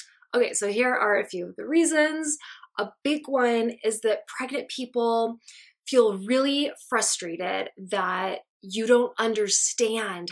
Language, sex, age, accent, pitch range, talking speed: English, female, 20-39, American, 205-265 Hz, 135 wpm